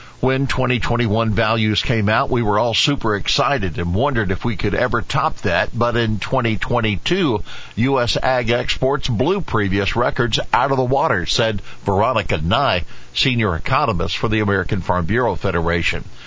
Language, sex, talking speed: English, male, 155 wpm